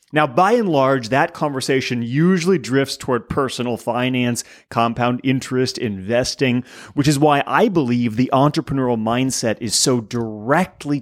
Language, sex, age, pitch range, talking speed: English, male, 30-49, 120-155 Hz, 135 wpm